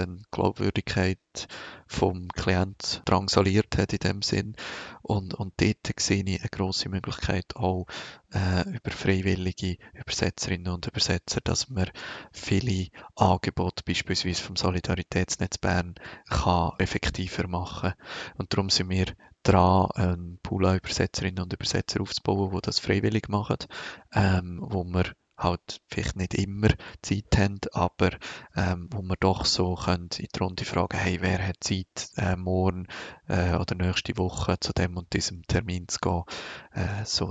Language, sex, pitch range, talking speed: German, male, 90-100 Hz, 140 wpm